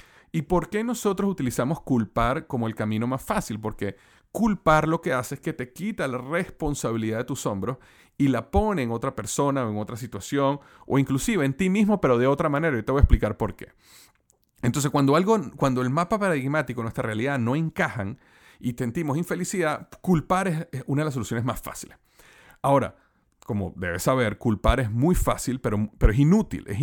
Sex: male